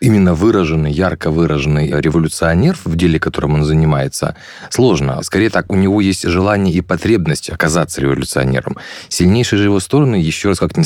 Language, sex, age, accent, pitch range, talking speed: Russian, male, 20-39, native, 80-100 Hz, 160 wpm